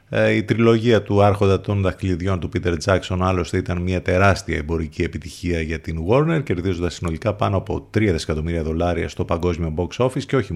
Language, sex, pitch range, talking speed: Greek, male, 90-115 Hz, 175 wpm